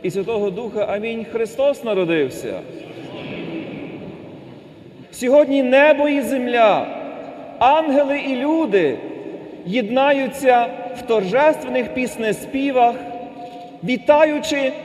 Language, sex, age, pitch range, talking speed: Ukrainian, male, 40-59, 225-280 Hz, 75 wpm